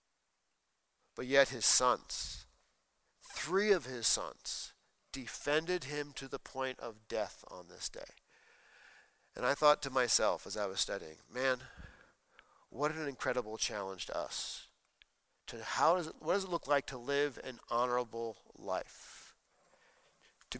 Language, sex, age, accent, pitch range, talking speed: English, male, 50-69, American, 130-170 Hz, 145 wpm